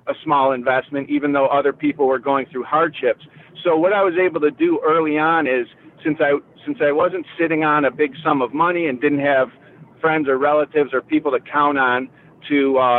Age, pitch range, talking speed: 50-69, 135-155 Hz, 210 wpm